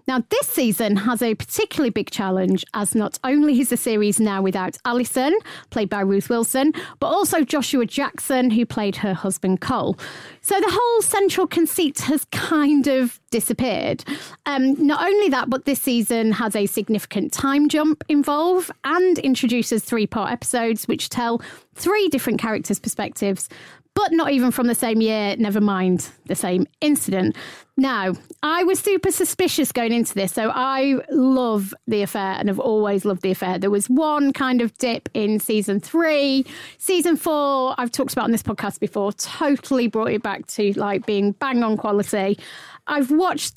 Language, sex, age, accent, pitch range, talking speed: English, female, 30-49, British, 210-315 Hz, 170 wpm